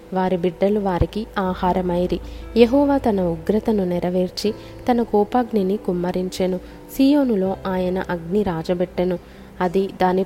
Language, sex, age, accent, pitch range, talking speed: Telugu, female, 20-39, native, 180-210 Hz, 95 wpm